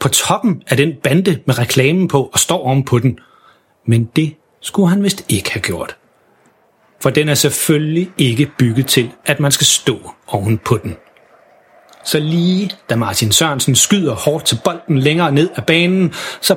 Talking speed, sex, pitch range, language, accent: 175 wpm, male, 130-180 Hz, Danish, native